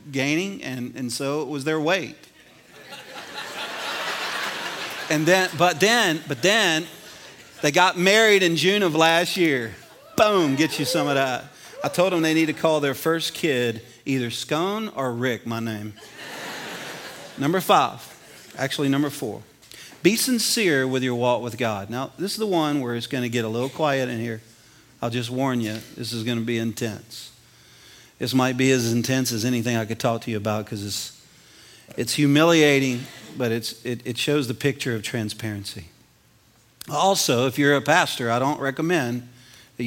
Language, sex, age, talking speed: English, male, 40-59, 175 wpm